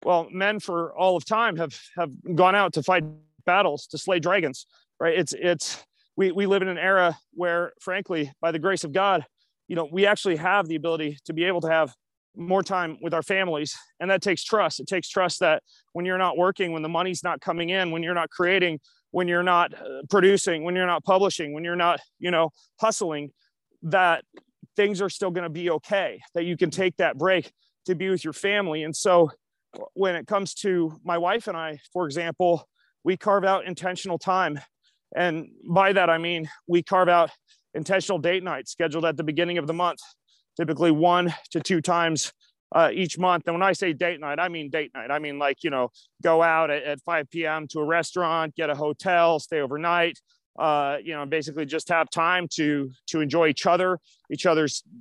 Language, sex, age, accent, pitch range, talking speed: English, male, 30-49, American, 160-185 Hz, 205 wpm